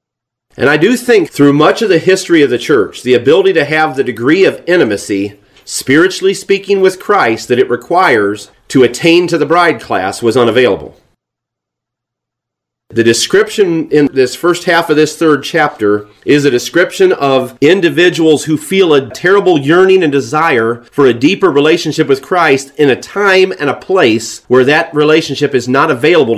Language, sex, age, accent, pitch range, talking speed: English, male, 40-59, American, 125-180 Hz, 170 wpm